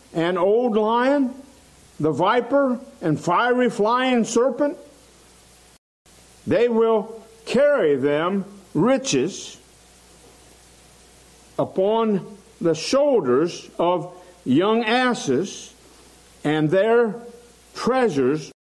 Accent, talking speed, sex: American, 75 wpm, male